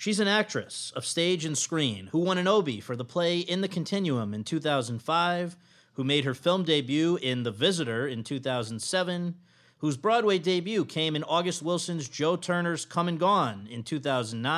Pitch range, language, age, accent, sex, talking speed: 130-180 Hz, English, 40-59, American, male, 175 wpm